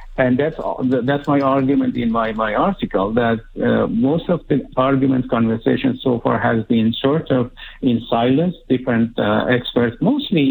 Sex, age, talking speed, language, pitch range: male, 50-69, 160 wpm, English, 115-140 Hz